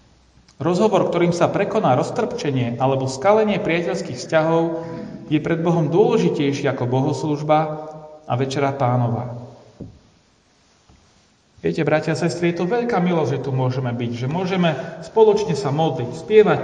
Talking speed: 125 wpm